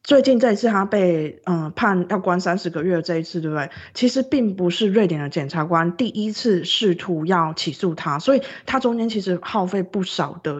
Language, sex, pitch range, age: Chinese, female, 170-205 Hz, 20-39